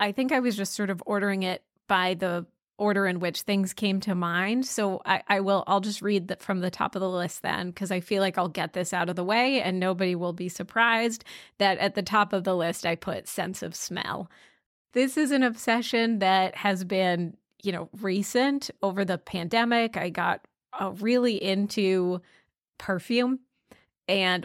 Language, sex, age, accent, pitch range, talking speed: English, female, 30-49, American, 185-230 Hz, 200 wpm